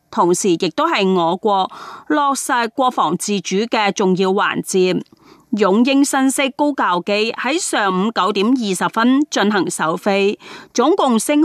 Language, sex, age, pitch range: Chinese, female, 30-49, 195-295 Hz